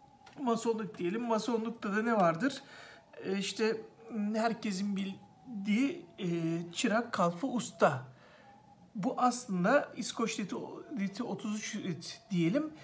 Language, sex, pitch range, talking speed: Turkish, male, 190-235 Hz, 85 wpm